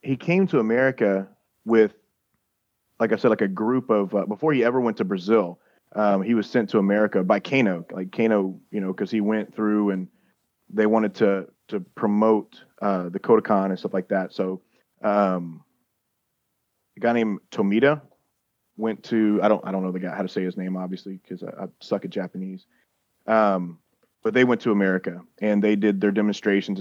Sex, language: male, English